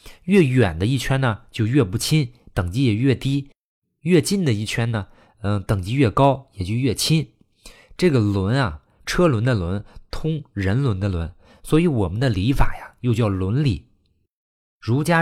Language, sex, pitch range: Chinese, male, 95-135 Hz